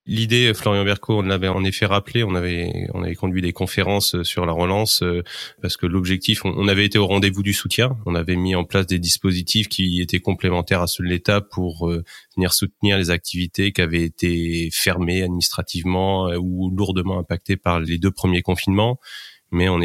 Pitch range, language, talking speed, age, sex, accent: 90-100 Hz, French, 185 wpm, 30-49, male, French